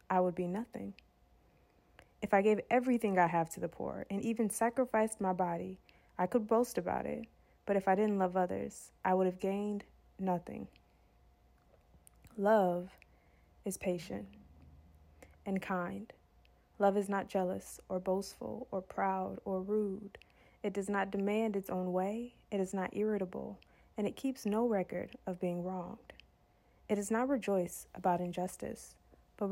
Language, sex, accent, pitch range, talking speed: English, female, American, 170-205 Hz, 150 wpm